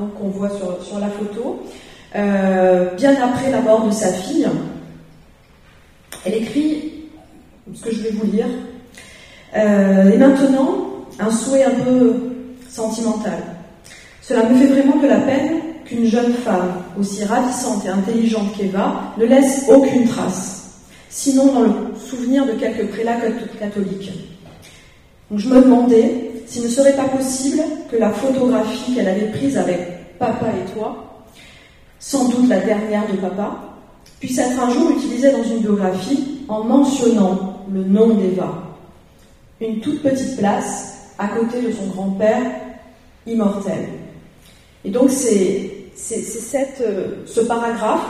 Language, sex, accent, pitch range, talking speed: French, female, French, 200-250 Hz, 145 wpm